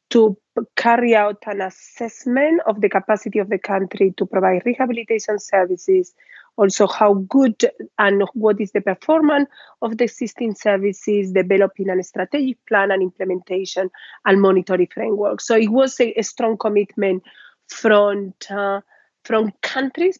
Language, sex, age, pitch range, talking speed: English, female, 30-49, 195-225 Hz, 135 wpm